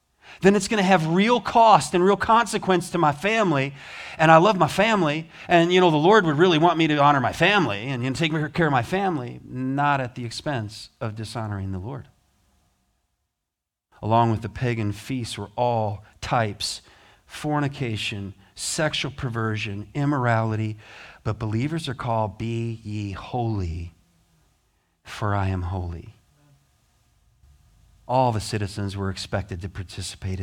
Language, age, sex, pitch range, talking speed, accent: English, 40-59, male, 100-170 Hz, 150 wpm, American